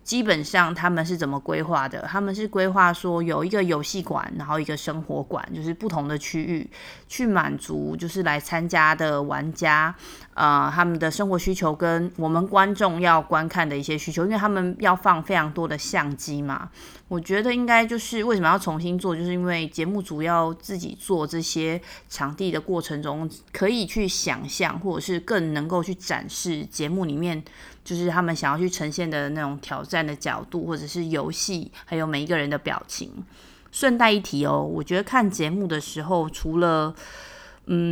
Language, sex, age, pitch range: Chinese, female, 20-39, 155-190 Hz